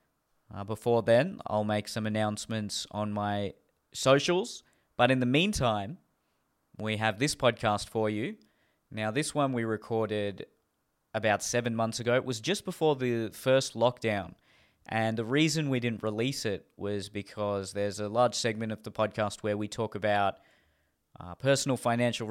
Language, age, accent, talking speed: English, 20-39, Australian, 160 wpm